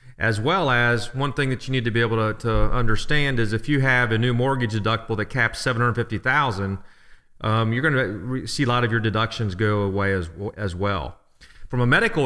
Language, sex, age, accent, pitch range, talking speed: English, male, 40-59, American, 115-145 Hz, 215 wpm